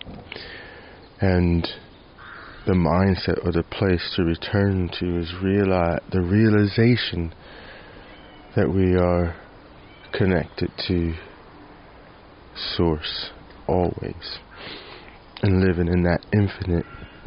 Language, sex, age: English, male, 30-49